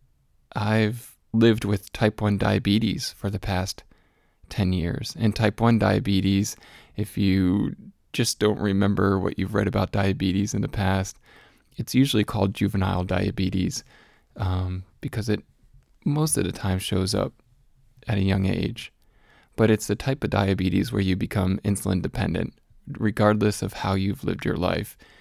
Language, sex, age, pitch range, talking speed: English, male, 20-39, 95-110 Hz, 150 wpm